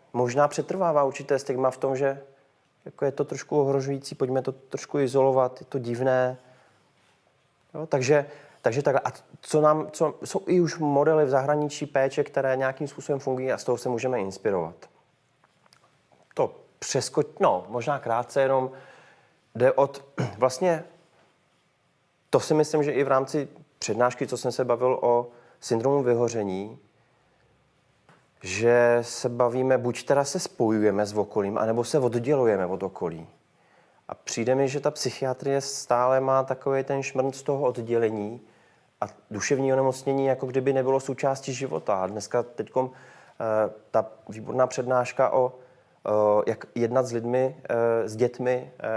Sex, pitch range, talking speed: male, 115-140 Hz, 145 wpm